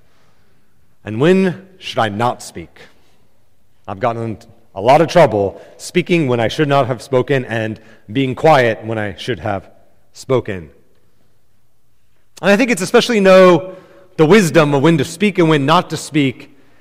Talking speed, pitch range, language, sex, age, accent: 165 wpm, 110-145 Hz, English, male, 30-49, American